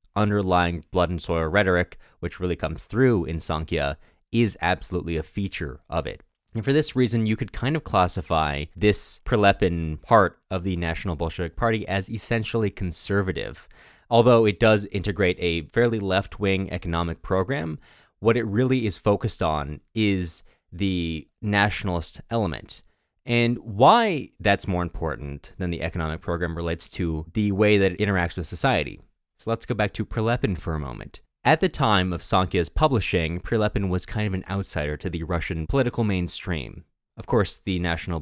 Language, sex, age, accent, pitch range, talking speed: English, male, 20-39, American, 85-110 Hz, 165 wpm